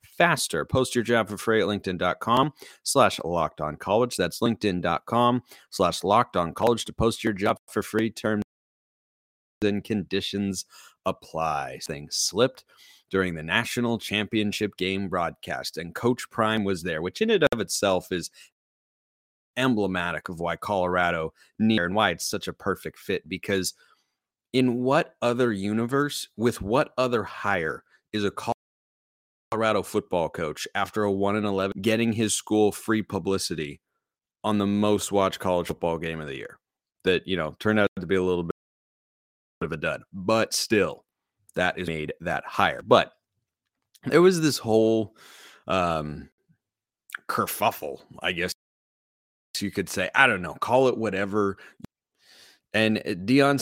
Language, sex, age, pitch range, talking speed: English, male, 30-49, 90-110 Hz, 150 wpm